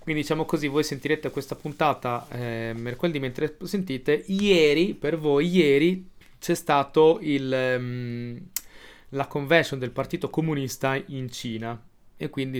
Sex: male